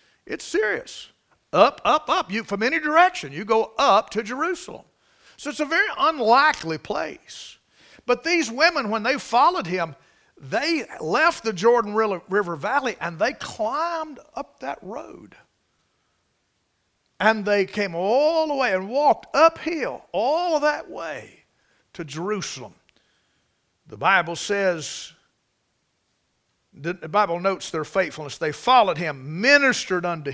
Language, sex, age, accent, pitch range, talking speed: English, male, 50-69, American, 180-275 Hz, 130 wpm